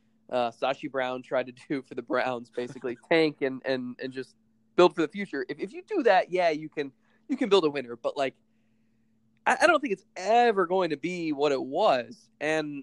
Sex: male